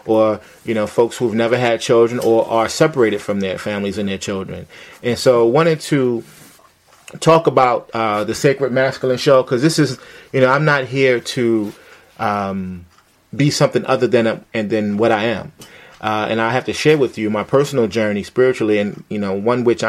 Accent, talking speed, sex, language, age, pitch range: American, 200 wpm, male, English, 30-49, 105-130 Hz